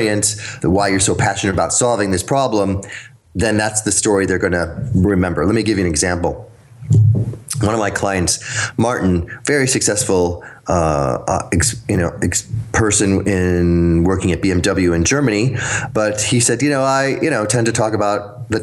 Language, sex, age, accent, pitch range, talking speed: English, male, 30-49, American, 90-115 Hz, 180 wpm